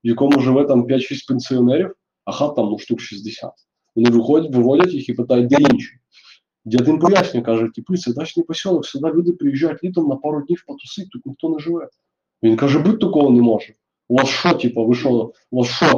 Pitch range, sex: 120-170 Hz, male